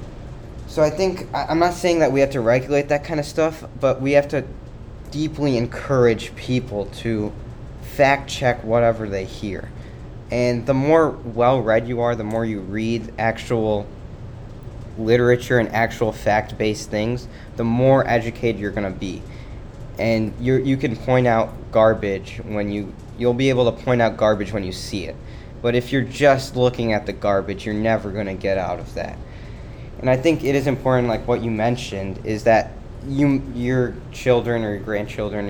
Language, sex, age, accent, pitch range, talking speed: English, male, 20-39, American, 105-125 Hz, 175 wpm